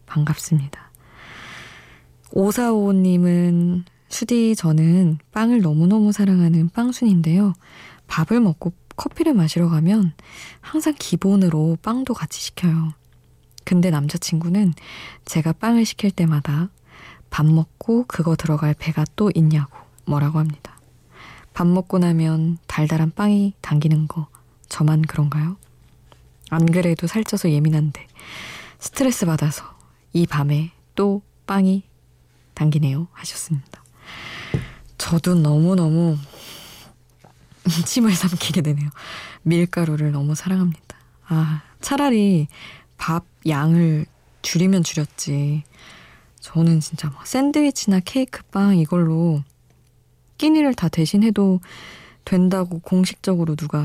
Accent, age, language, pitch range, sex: native, 20-39, Korean, 155-190 Hz, female